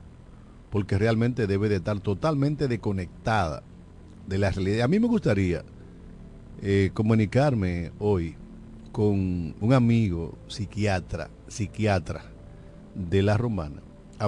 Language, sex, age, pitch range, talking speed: Spanish, male, 50-69, 90-125 Hz, 110 wpm